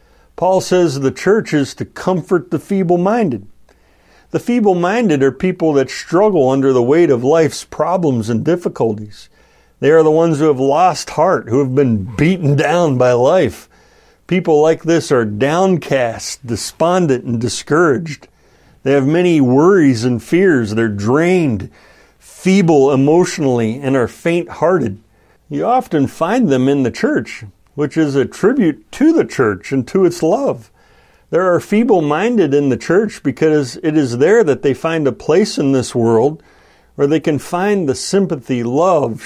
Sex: male